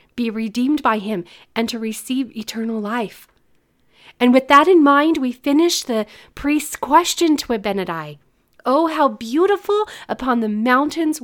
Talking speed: 145 wpm